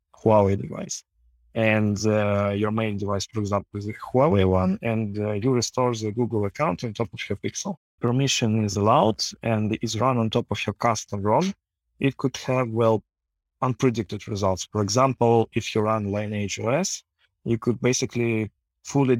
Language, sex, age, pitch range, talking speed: English, male, 20-39, 100-115 Hz, 170 wpm